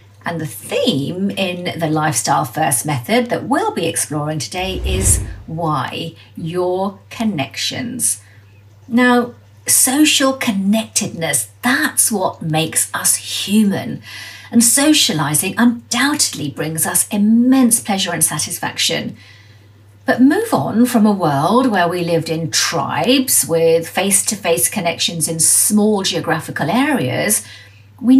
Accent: British